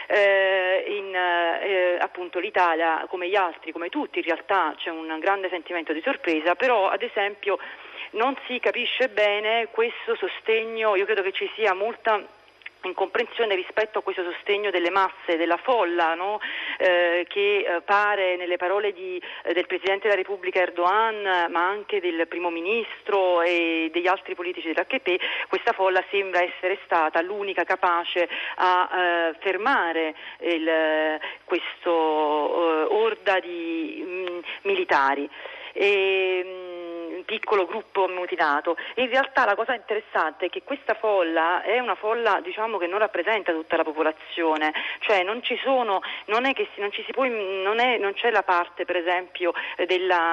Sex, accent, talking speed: female, native, 140 wpm